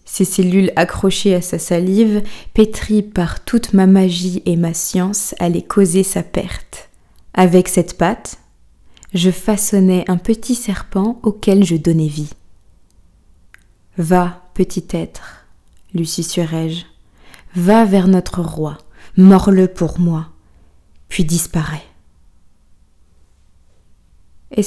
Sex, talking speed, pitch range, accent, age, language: female, 110 wpm, 170-200 Hz, French, 20-39, French